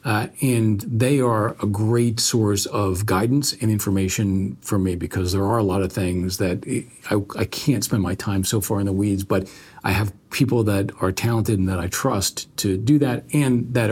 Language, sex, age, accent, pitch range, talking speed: English, male, 40-59, American, 100-120 Hz, 205 wpm